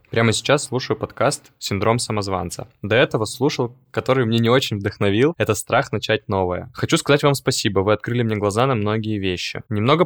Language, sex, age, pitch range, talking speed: Russian, male, 20-39, 105-135 Hz, 180 wpm